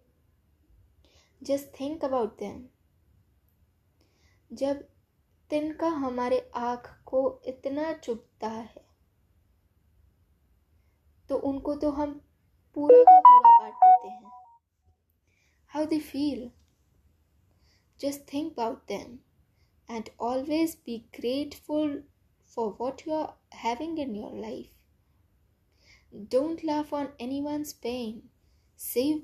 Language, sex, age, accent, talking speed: Hindi, female, 10-29, native, 95 wpm